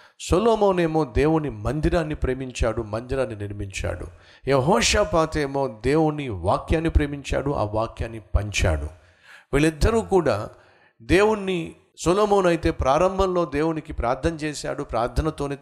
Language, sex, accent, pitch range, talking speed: Telugu, male, native, 110-155 Hz, 100 wpm